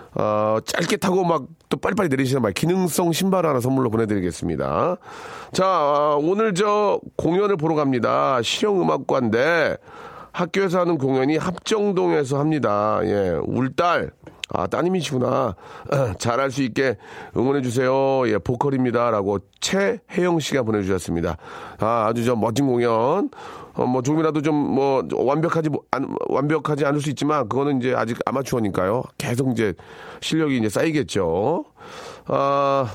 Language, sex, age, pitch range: Korean, male, 40-59, 120-165 Hz